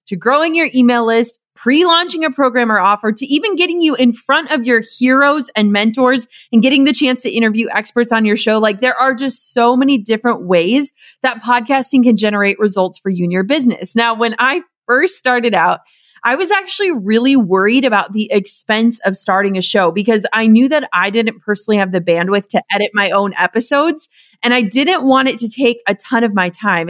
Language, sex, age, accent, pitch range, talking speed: English, female, 30-49, American, 205-260 Hz, 210 wpm